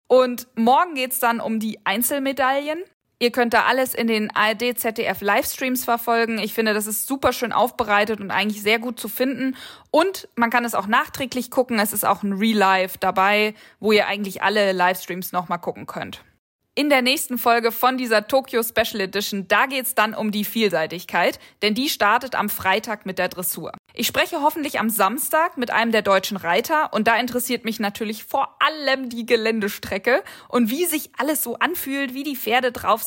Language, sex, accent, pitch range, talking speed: German, female, German, 210-260 Hz, 190 wpm